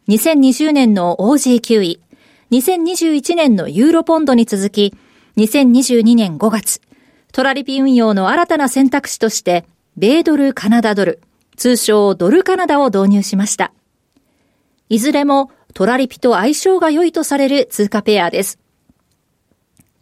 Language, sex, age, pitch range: Japanese, female, 40-59, 220-290 Hz